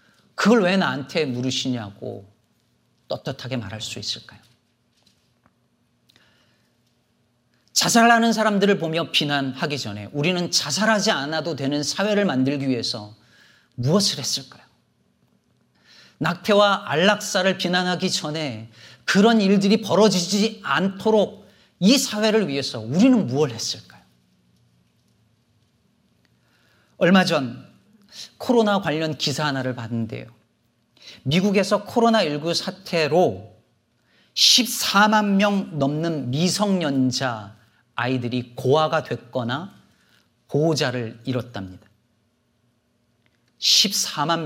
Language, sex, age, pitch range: Korean, male, 40-59, 120-195 Hz